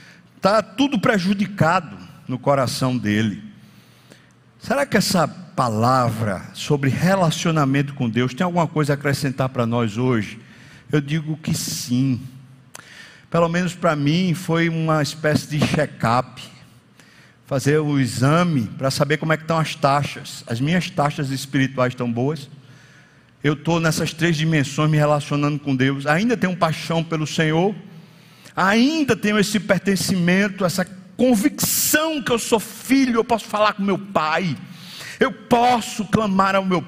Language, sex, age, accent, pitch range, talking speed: Portuguese, male, 60-79, Brazilian, 145-210 Hz, 140 wpm